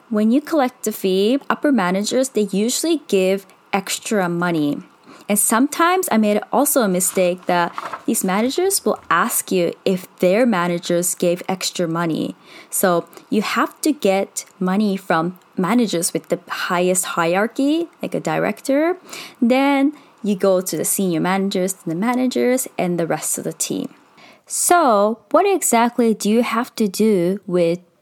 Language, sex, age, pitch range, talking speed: English, female, 20-39, 180-255 Hz, 150 wpm